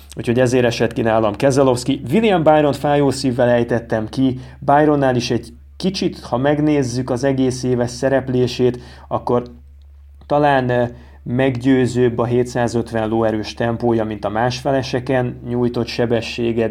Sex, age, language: male, 30-49, Hungarian